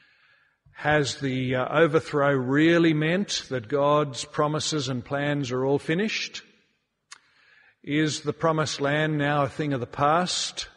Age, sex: 50-69, male